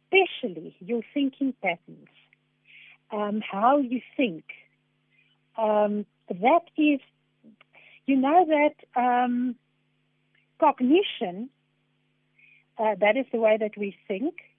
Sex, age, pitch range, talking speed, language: female, 60-79, 210-275 Hz, 100 wpm, English